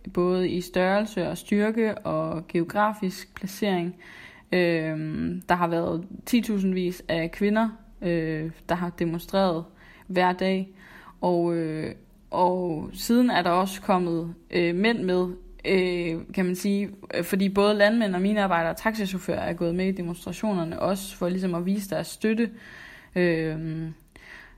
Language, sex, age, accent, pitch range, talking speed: Danish, female, 20-39, native, 170-200 Hz, 140 wpm